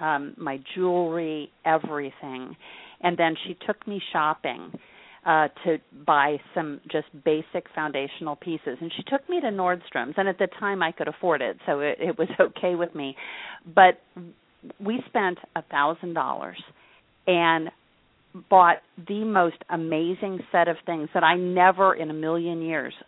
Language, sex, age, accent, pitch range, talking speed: English, female, 40-59, American, 145-175 Hz, 155 wpm